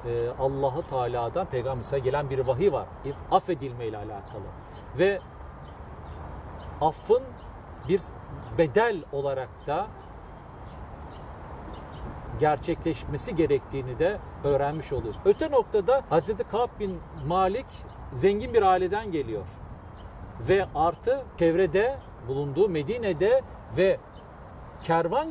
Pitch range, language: 125-200 Hz, Turkish